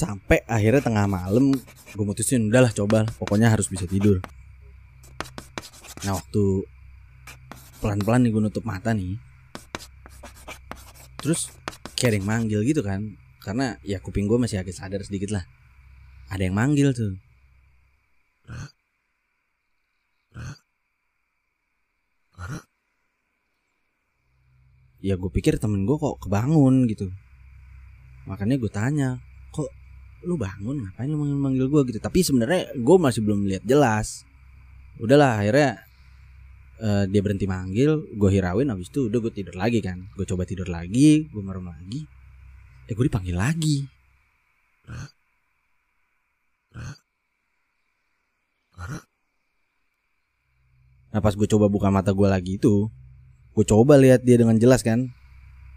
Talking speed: 115 wpm